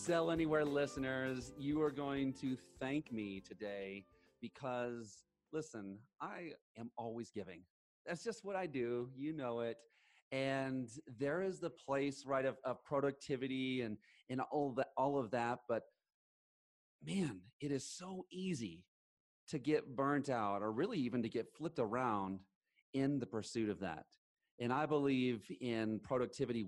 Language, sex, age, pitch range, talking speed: English, male, 30-49, 110-140 Hz, 150 wpm